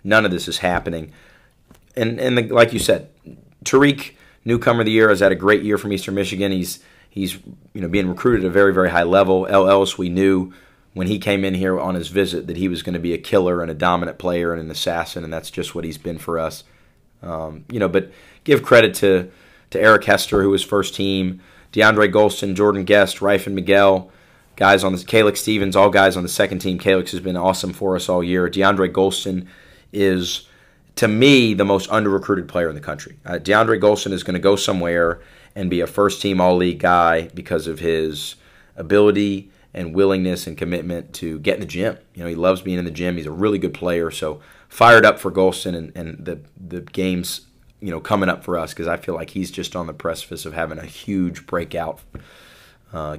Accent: American